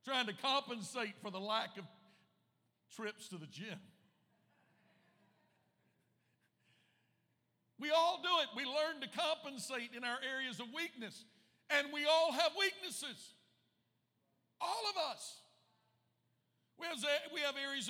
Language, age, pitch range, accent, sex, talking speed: English, 60-79, 195-280 Hz, American, male, 115 wpm